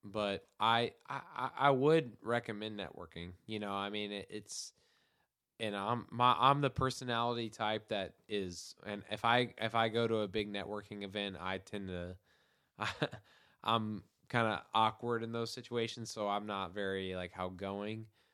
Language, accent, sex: English, American, male